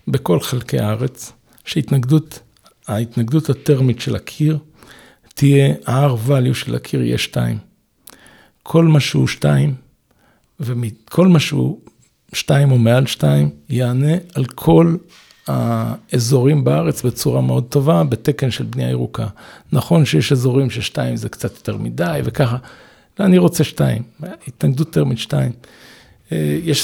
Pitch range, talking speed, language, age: 120-155 Hz, 125 wpm, Hebrew, 60-79